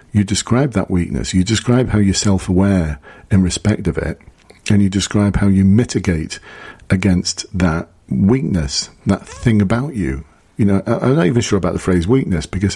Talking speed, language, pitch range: 180 wpm, English, 90-105 Hz